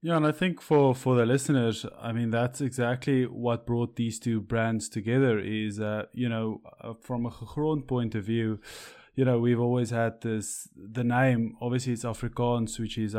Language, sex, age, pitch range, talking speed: English, male, 20-39, 110-125 Hz, 190 wpm